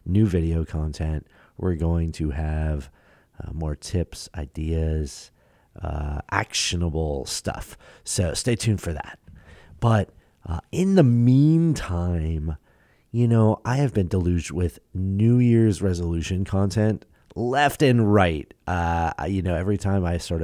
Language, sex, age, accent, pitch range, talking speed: English, male, 30-49, American, 85-105 Hz, 130 wpm